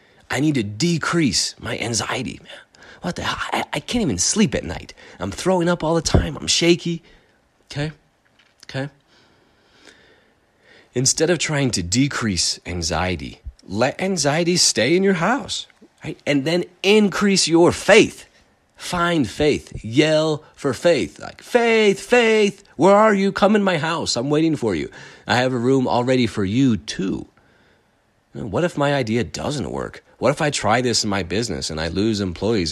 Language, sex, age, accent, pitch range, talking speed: English, male, 30-49, American, 110-165 Hz, 165 wpm